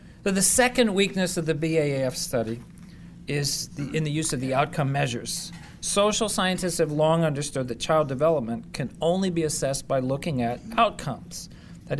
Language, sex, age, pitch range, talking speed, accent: English, male, 40-59, 145-180 Hz, 165 wpm, American